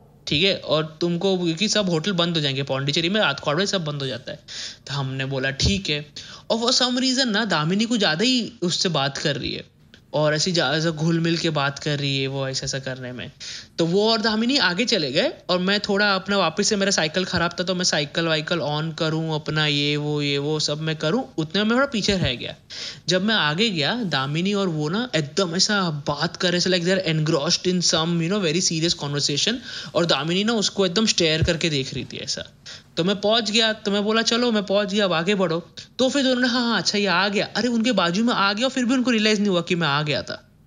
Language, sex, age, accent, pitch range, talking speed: Hindi, male, 20-39, native, 150-200 Hz, 240 wpm